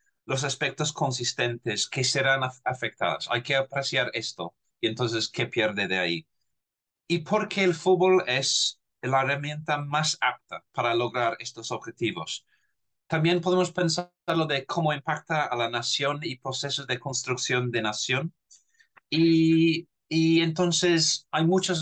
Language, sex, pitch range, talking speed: Spanish, male, 125-160 Hz, 140 wpm